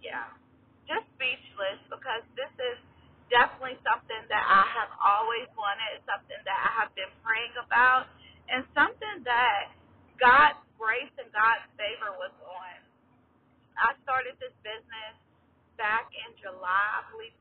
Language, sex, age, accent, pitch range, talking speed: English, female, 20-39, American, 210-275 Hz, 140 wpm